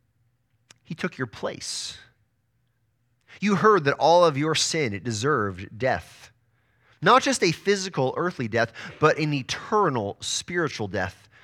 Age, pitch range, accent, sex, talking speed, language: 30-49, 115-150 Hz, American, male, 130 wpm, English